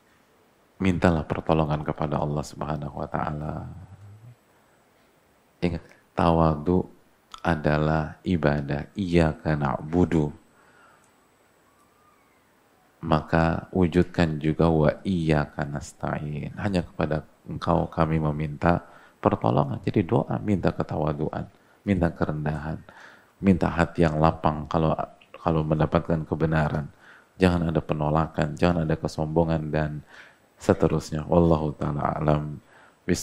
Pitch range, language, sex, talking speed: 75-90 Hz, Indonesian, male, 95 wpm